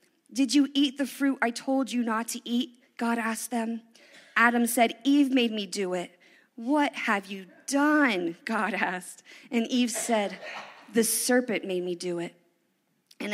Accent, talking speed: American, 165 wpm